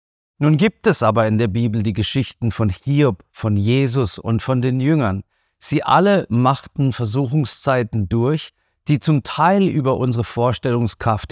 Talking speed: 150 wpm